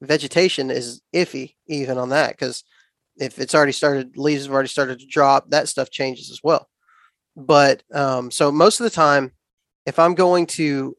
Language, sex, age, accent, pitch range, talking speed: English, male, 20-39, American, 135-155 Hz, 180 wpm